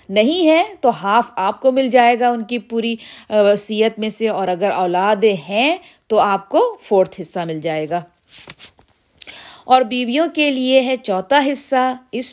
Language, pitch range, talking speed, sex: Urdu, 195-250 Hz, 170 wpm, female